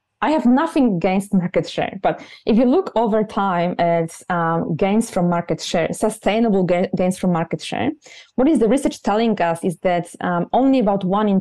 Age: 20-39